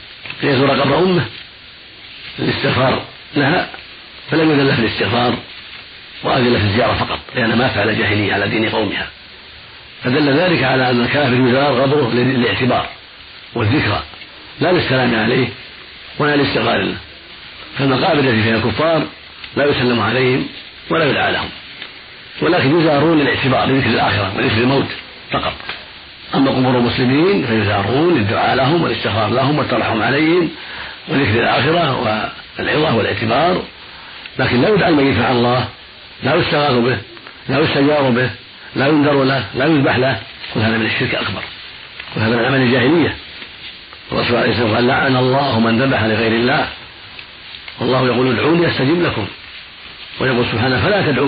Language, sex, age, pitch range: Arabic, male, 50-69, 115-135 Hz